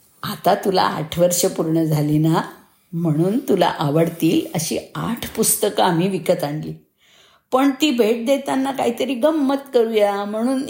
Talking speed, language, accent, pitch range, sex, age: 135 wpm, Marathi, native, 180-270 Hz, female, 50-69